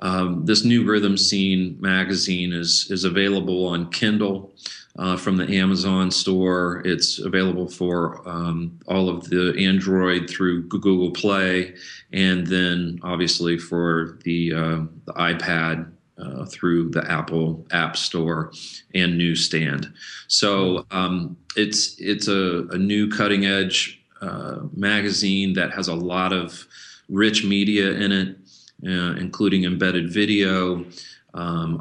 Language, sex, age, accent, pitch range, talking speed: English, male, 30-49, American, 85-95 Hz, 125 wpm